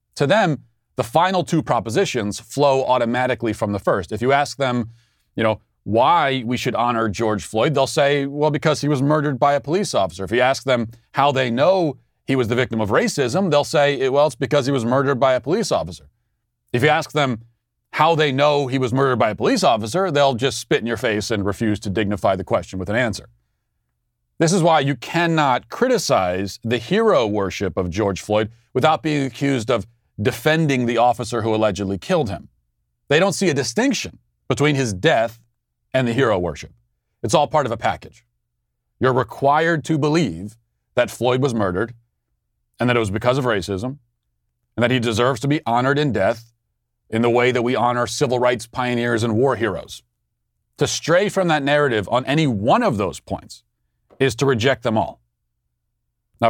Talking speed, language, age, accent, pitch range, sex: 195 wpm, English, 30-49, American, 110-140 Hz, male